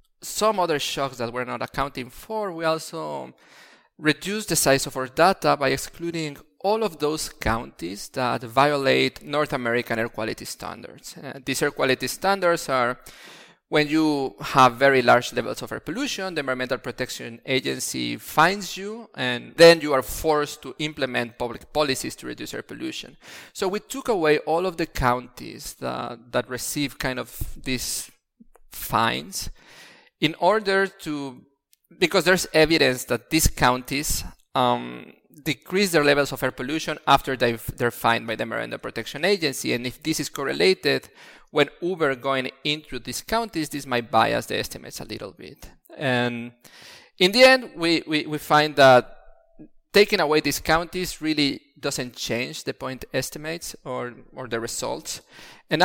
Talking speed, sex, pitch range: 155 wpm, male, 130-170 Hz